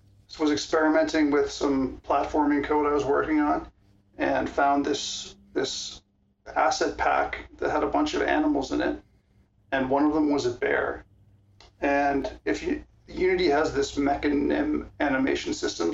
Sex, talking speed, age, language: male, 150 wpm, 40-59, English